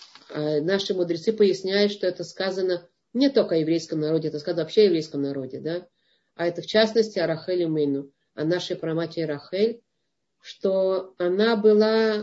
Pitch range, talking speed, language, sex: 170-220 Hz, 155 wpm, Russian, female